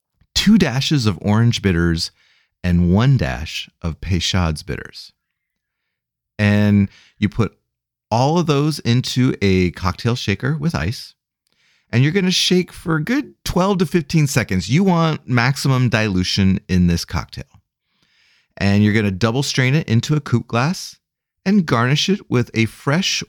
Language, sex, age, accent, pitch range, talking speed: English, male, 30-49, American, 100-140 Hz, 150 wpm